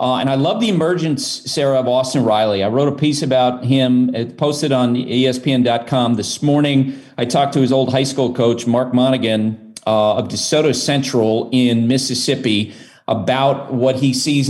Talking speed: 165 wpm